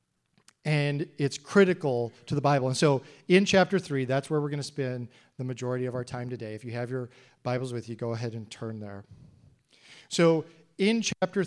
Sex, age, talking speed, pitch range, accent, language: male, 40-59, 200 wpm, 120-150 Hz, American, English